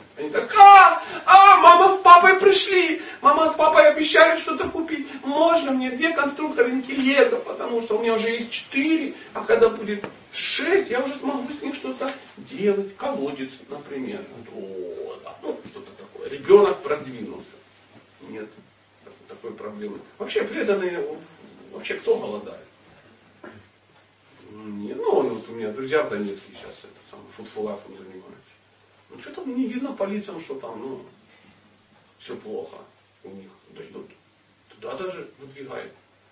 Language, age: Russian, 40-59